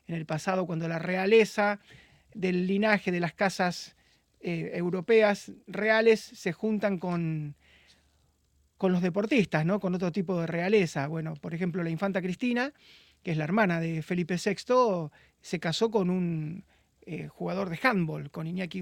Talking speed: 155 wpm